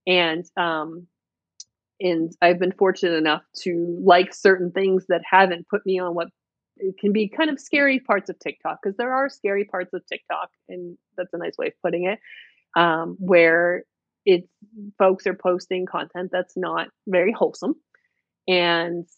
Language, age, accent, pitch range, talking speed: English, 30-49, American, 170-195 Hz, 165 wpm